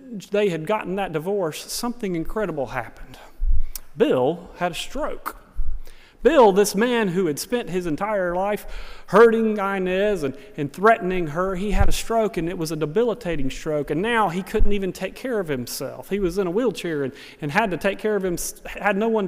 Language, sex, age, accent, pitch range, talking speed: English, male, 30-49, American, 160-210 Hz, 195 wpm